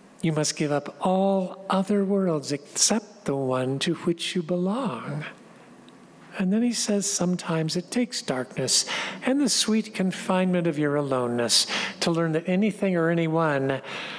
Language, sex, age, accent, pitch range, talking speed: English, male, 50-69, American, 135-200 Hz, 150 wpm